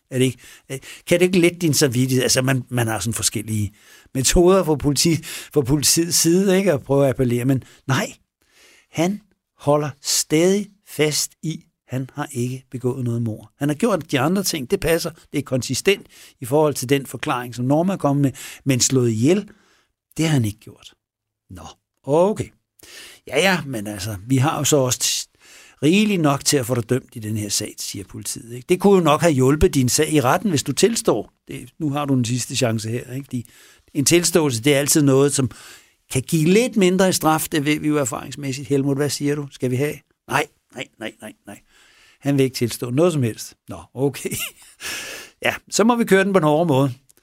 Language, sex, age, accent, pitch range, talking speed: Danish, male, 60-79, native, 125-165 Hz, 205 wpm